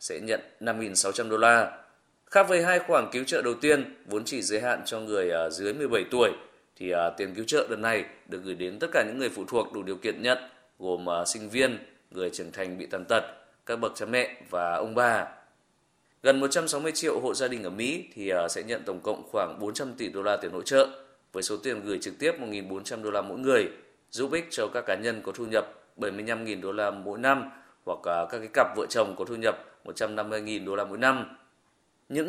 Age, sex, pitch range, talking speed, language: 20-39, male, 100-135 Hz, 220 wpm, Vietnamese